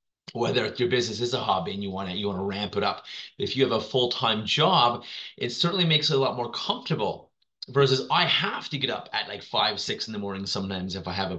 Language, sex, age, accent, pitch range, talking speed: English, male, 30-49, American, 100-130 Hz, 255 wpm